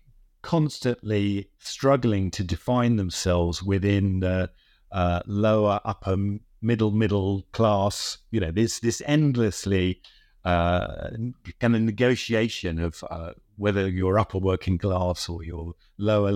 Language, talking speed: English, 115 wpm